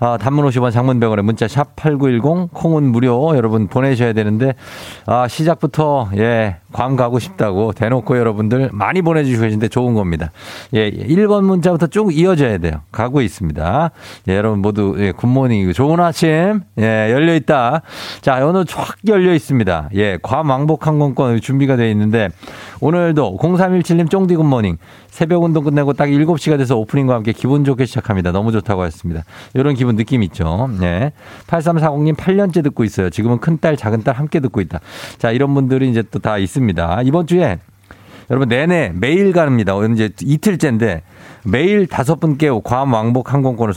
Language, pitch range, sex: Korean, 110-155 Hz, male